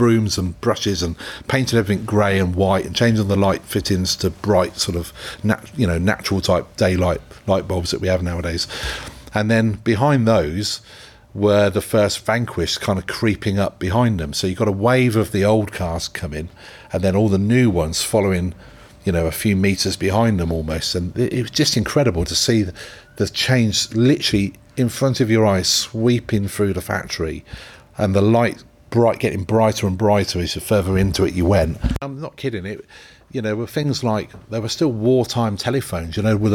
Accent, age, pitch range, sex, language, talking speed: British, 40-59, 95-120 Hz, male, English, 200 wpm